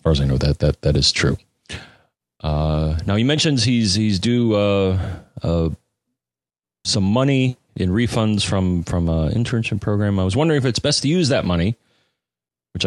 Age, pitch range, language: 30-49, 75-115 Hz, English